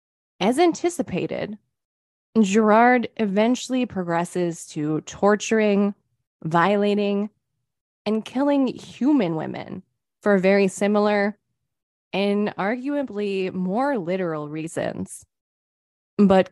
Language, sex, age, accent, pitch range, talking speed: English, female, 20-39, American, 170-220 Hz, 75 wpm